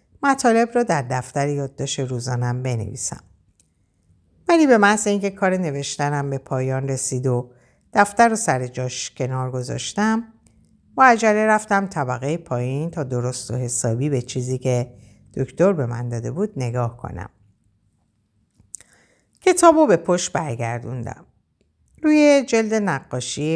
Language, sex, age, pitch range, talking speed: Persian, female, 50-69, 120-175 Hz, 125 wpm